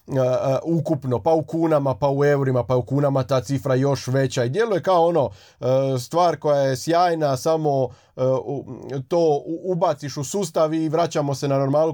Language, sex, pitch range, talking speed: Croatian, male, 130-165 Hz, 175 wpm